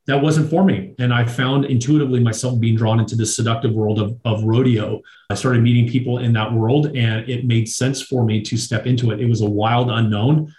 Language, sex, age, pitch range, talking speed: English, male, 30-49, 110-130 Hz, 225 wpm